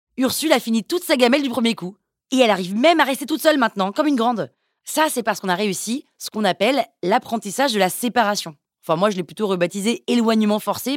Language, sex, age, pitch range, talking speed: French, female, 20-39, 200-265 Hz, 235 wpm